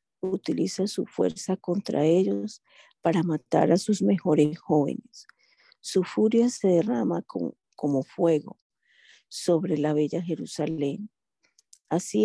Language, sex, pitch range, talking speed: Spanish, female, 160-195 Hz, 110 wpm